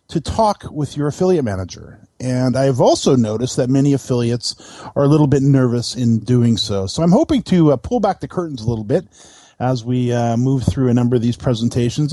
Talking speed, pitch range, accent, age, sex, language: 215 wpm, 125-170 Hz, American, 40-59, male, English